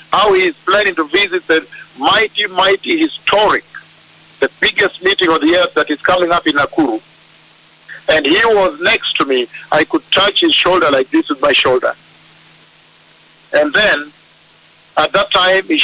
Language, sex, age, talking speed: English, male, 50-69, 165 wpm